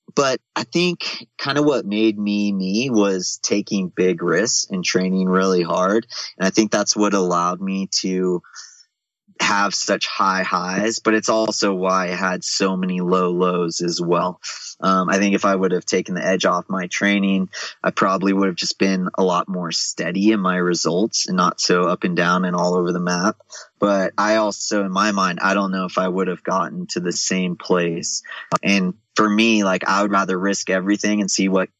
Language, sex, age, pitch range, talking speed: English, male, 20-39, 90-105 Hz, 205 wpm